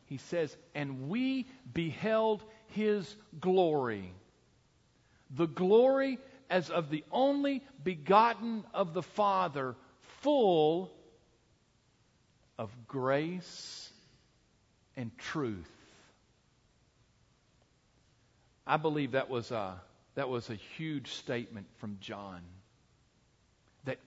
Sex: male